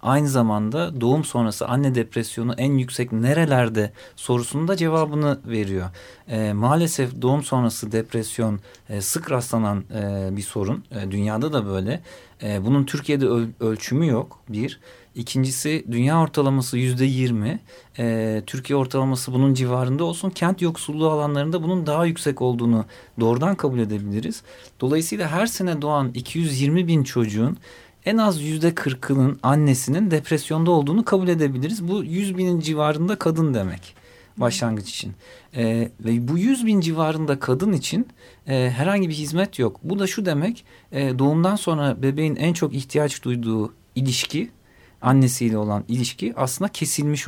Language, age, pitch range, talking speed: Turkish, 40-59, 115-155 Hz, 140 wpm